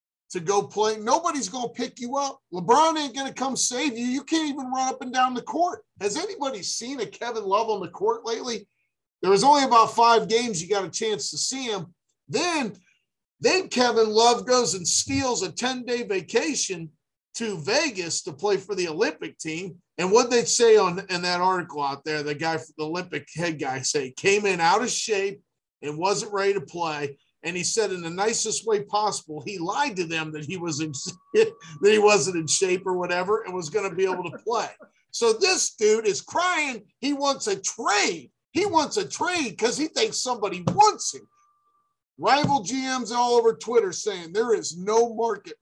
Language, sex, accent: English, male, American